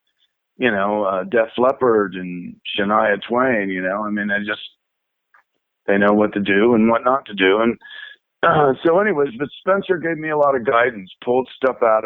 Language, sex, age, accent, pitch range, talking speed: English, male, 50-69, American, 100-130 Hz, 195 wpm